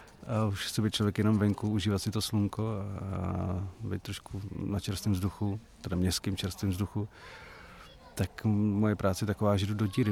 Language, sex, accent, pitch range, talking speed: Czech, male, native, 95-110 Hz, 170 wpm